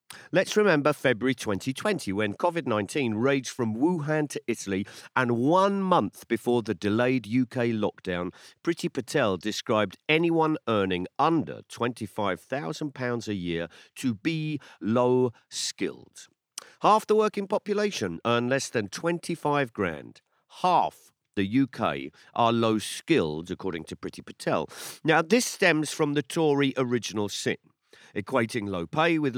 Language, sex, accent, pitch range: English, male, British, 110-165 Hz